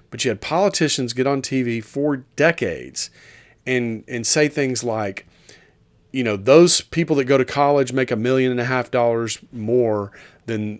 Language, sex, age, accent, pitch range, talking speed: English, male, 40-59, American, 115-145 Hz, 170 wpm